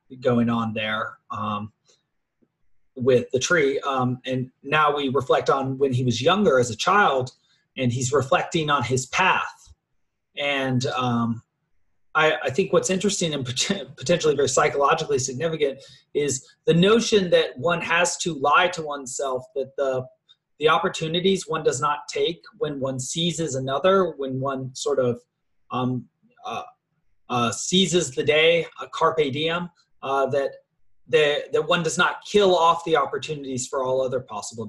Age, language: 30-49, English